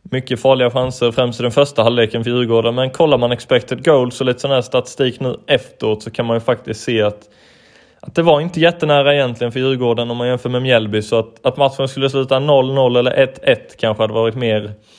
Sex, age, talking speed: male, 20-39, 220 wpm